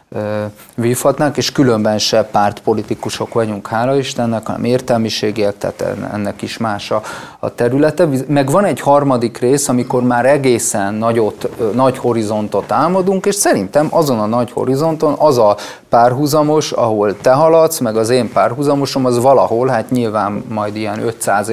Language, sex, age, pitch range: Hungarian, male, 30-49, 105-130 Hz